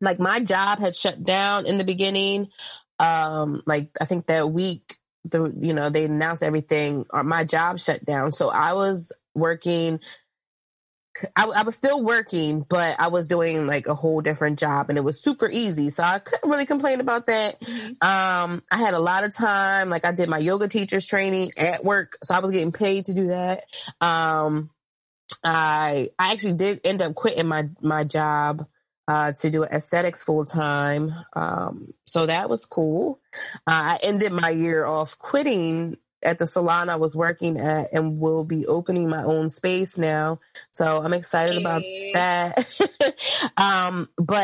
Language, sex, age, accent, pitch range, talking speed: English, female, 20-39, American, 155-195 Hz, 175 wpm